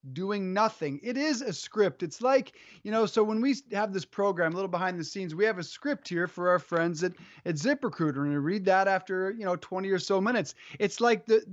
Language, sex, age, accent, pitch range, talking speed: English, male, 30-49, American, 170-220 Hz, 240 wpm